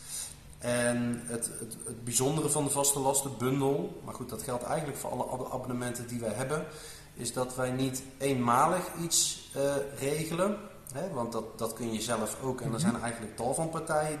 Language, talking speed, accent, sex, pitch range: Dutch, 175 wpm, Dutch, male, 115-140 Hz